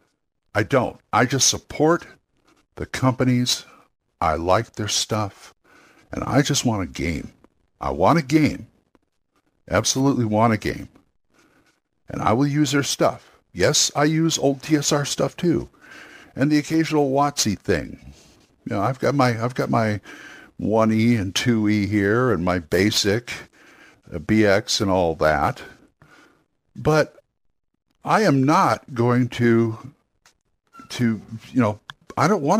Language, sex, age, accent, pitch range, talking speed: English, male, 60-79, American, 100-130 Hz, 135 wpm